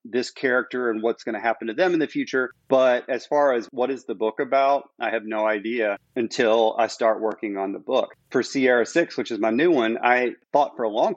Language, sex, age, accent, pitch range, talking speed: English, male, 40-59, American, 115-135 Hz, 240 wpm